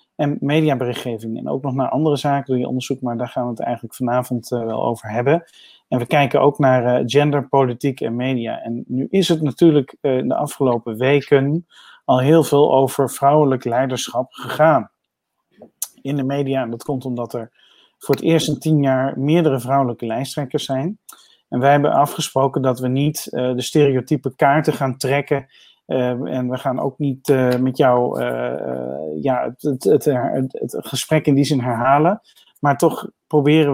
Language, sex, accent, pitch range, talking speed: Dutch, male, Dutch, 125-150 Hz, 180 wpm